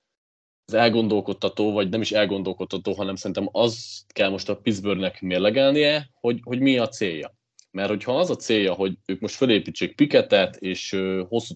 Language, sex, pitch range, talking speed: Hungarian, male, 95-120 Hz, 160 wpm